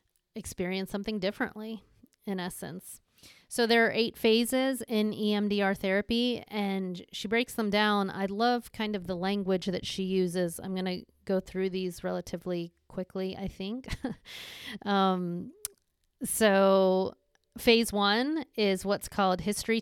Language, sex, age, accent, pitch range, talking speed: English, female, 30-49, American, 185-225 Hz, 135 wpm